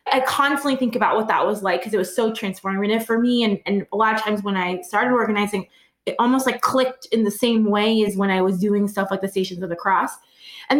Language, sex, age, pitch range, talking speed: English, female, 20-39, 210-270 Hz, 255 wpm